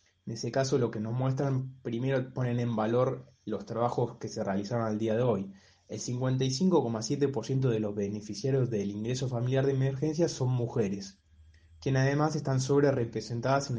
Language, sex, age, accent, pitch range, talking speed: Spanish, male, 20-39, Argentinian, 105-130 Hz, 165 wpm